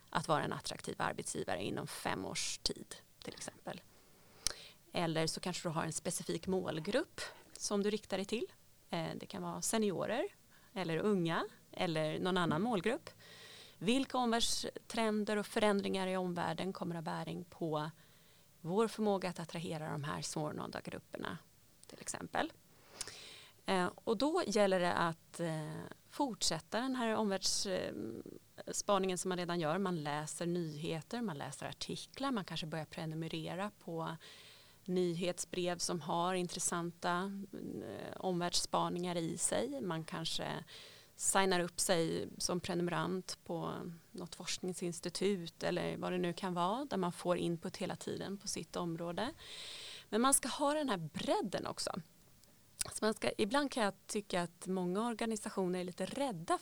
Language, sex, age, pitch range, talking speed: Swedish, female, 30-49, 170-205 Hz, 135 wpm